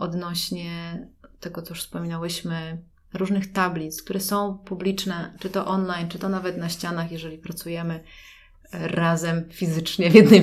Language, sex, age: Polish, female, 30-49